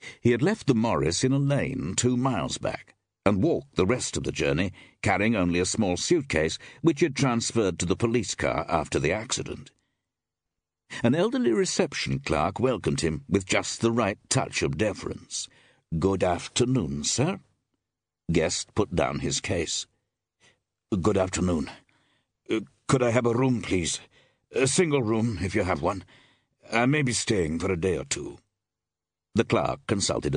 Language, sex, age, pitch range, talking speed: English, male, 60-79, 90-125 Hz, 165 wpm